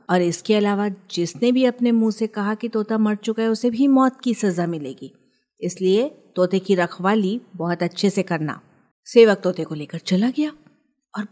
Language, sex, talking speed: Hindi, female, 185 wpm